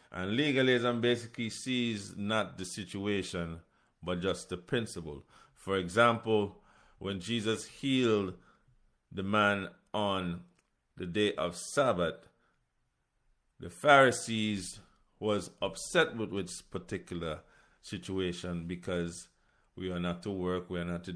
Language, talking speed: English, 115 wpm